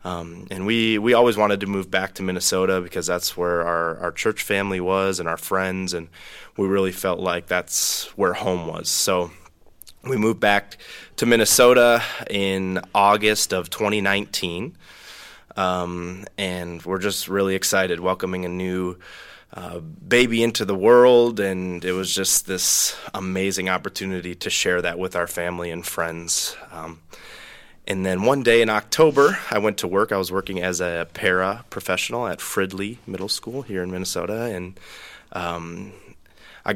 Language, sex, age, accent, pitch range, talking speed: English, male, 20-39, American, 90-100 Hz, 160 wpm